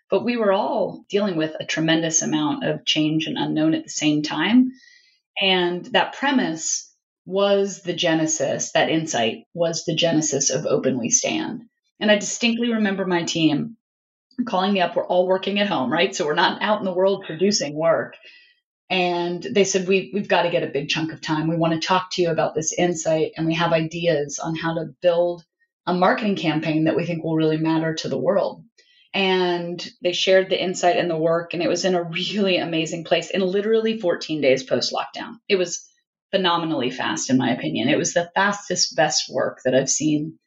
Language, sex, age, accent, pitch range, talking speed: English, female, 30-49, American, 165-200 Hz, 200 wpm